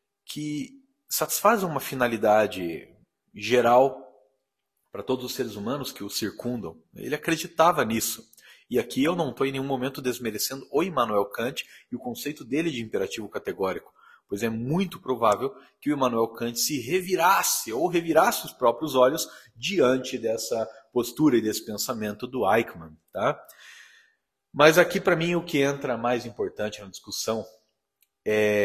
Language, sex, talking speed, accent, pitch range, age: Portuguese, male, 145 wpm, Brazilian, 110-180 Hz, 40-59